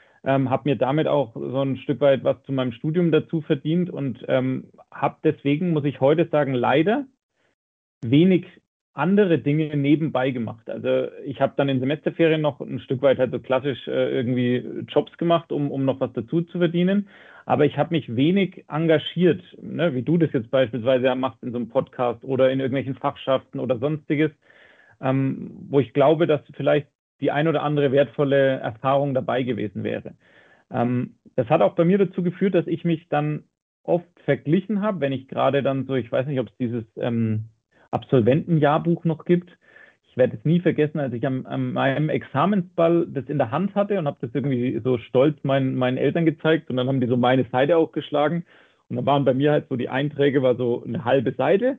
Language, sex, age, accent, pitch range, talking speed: German, male, 30-49, German, 130-165 Hz, 190 wpm